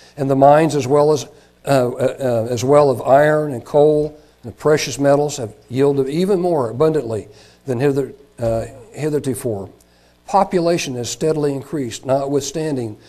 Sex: male